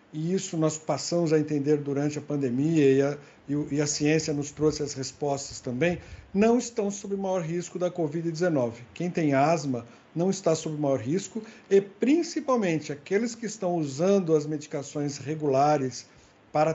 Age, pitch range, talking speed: 60-79, 150-185 Hz, 155 wpm